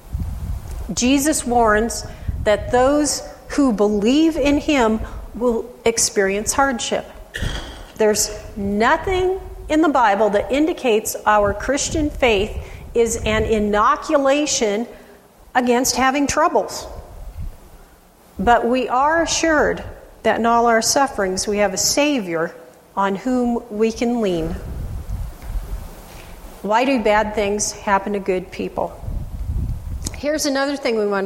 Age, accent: 40-59, American